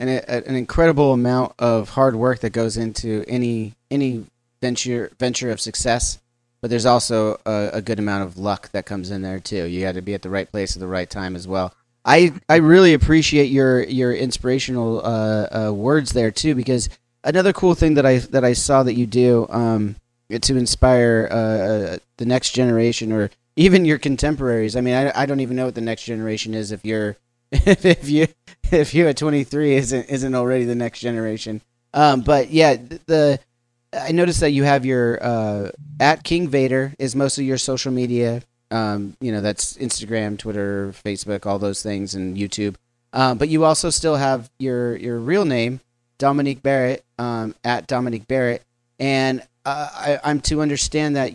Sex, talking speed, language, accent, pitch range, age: male, 185 wpm, English, American, 110-140 Hz, 30-49